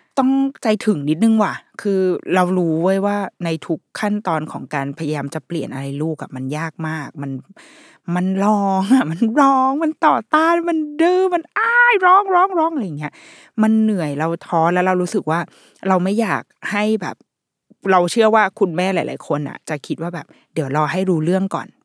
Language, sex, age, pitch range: Thai, female, 20-39, 155-220 Hz